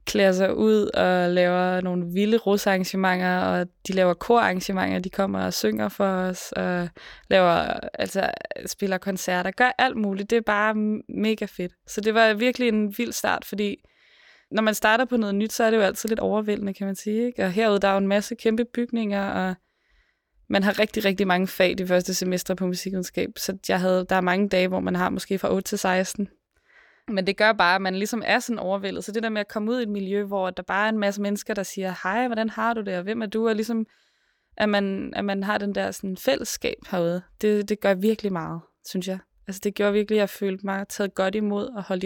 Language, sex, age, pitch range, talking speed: Danish, female, 20-39, 190-215 Hz, 230 wpm